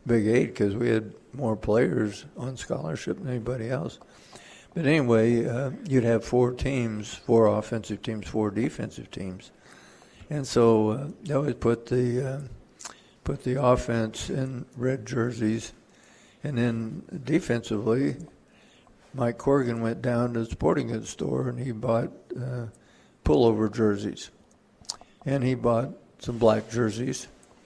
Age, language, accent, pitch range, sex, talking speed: 60-79, English, American, 115-135 Hz, male, 135 wpm